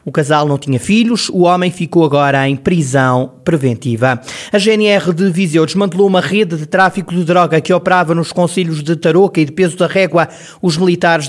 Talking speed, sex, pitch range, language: 190 wpm, male, 155-185 Hz, Portuguese